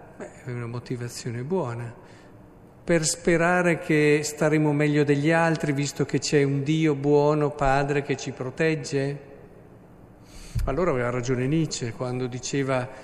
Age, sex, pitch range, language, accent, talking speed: 50-69, male, 130-150 Hz, Italian, native, 130 wpm